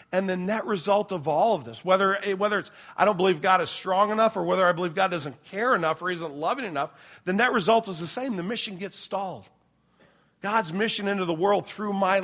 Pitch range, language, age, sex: 145-195 Hz, English, 40-59, male